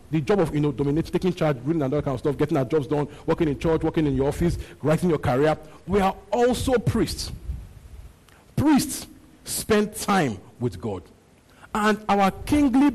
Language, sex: English, male